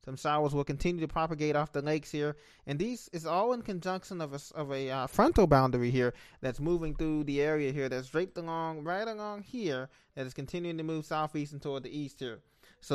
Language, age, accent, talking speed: English, 20-39, American, 220 wpm